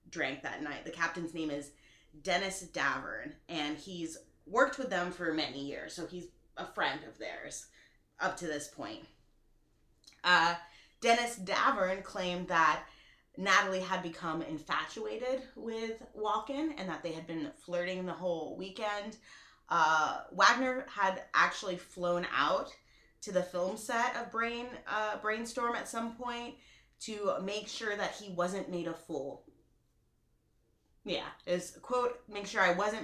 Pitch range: 165-215 Hz